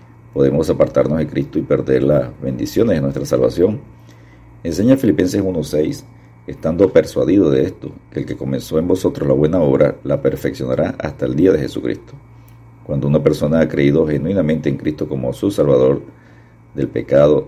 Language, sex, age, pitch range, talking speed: Spanish, male, 50-69, 70-80 Hz, 160 wpm